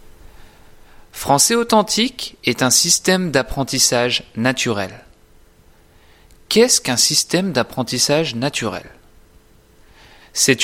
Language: French